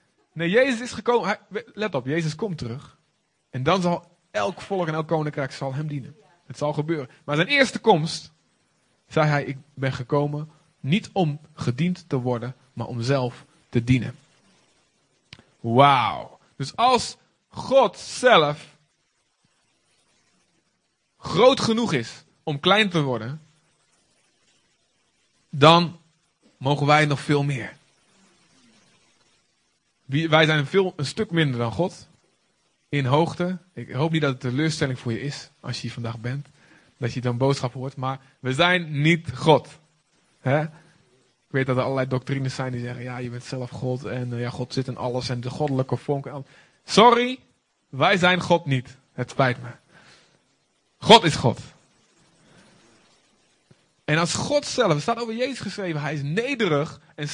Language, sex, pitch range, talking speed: Dutch, male, 130-170 Hz, 150 wpm